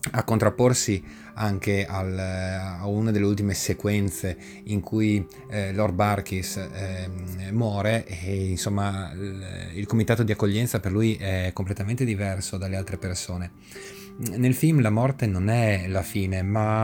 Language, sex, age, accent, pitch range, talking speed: Italian, male, 30-49, native, 95-115 Hz, 130 wpm